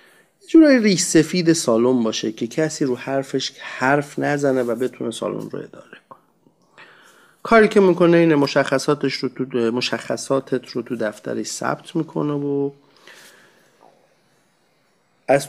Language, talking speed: Persian, 120 wpm